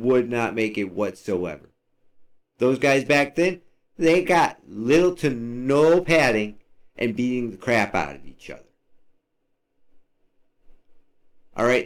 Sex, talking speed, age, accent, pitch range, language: male, 120 wpm, 50-69, American, 120-155 Hz, English